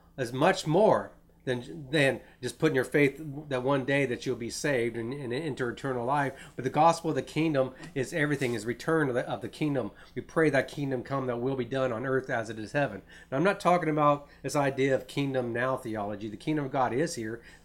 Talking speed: 235 wpm